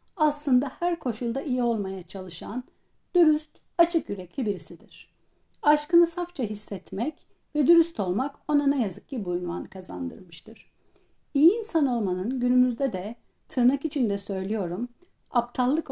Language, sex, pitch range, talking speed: Turkish, female, 195-280 Hz, 120 wpm